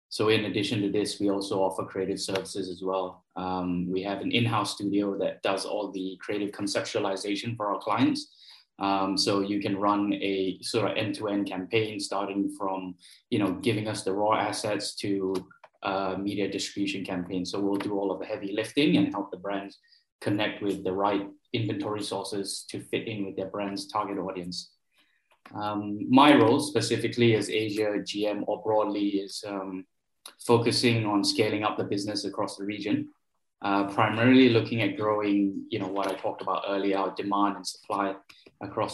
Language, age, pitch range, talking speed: English, 20-39, 95-105 Hz, 175 wpm